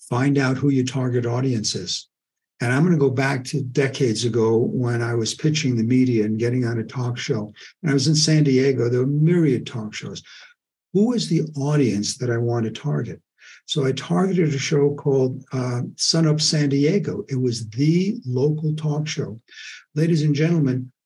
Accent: American